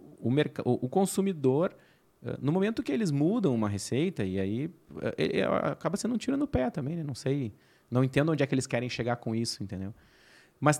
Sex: male